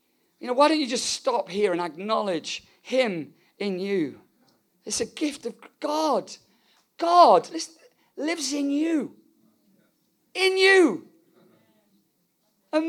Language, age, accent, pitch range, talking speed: English, 50-69, British, 200-305 Hz, 115 wpm